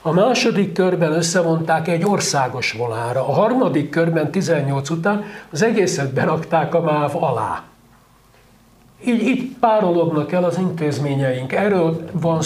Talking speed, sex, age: 125 wpm, male, 60-79